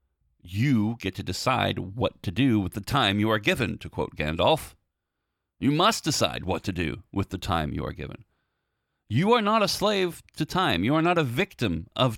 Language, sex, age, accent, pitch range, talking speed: English, male, 40-59, American, 95-125 Hz, 200 wpm